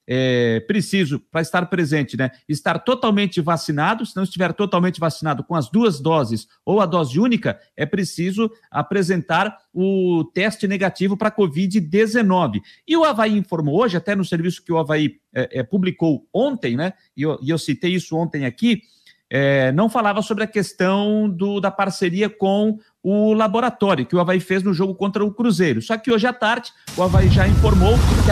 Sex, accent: male, Brazilian